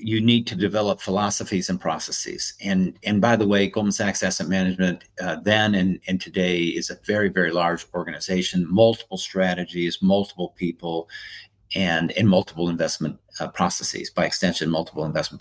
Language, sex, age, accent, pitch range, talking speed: English, male, 50-69, American, 90-110 Hz, 160 wpm